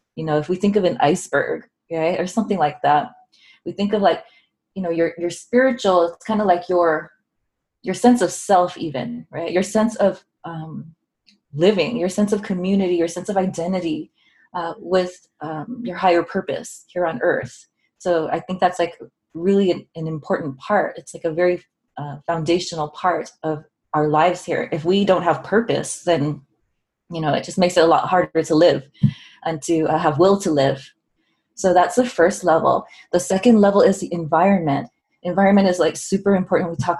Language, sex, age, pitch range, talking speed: English, female, 20-39, 160-190 Hz, 195 wpm